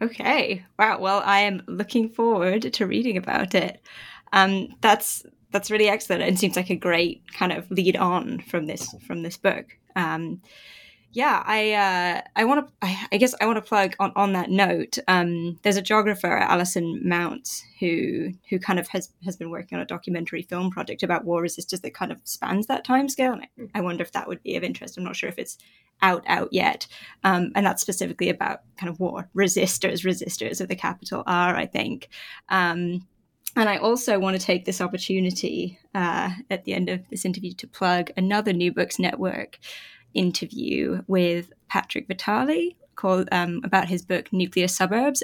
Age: 10-29